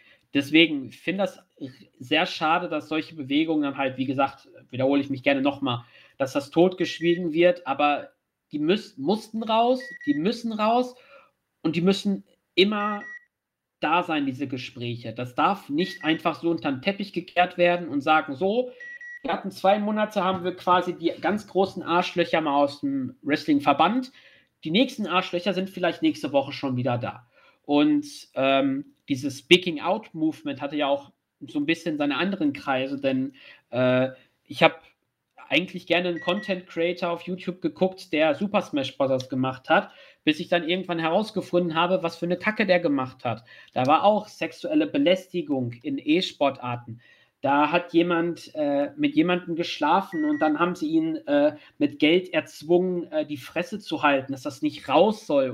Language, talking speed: German, 165 wpm